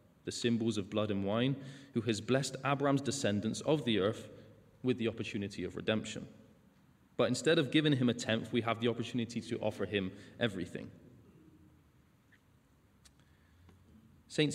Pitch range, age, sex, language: 105-130 Hz, 20-39, male, English